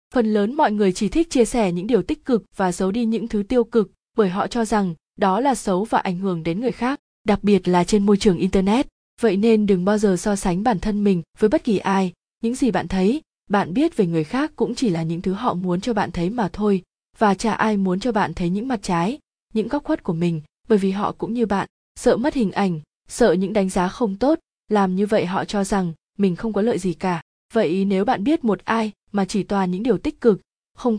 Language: Vietnamese